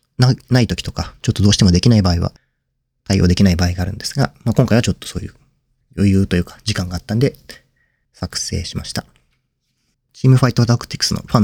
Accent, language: native, Japanese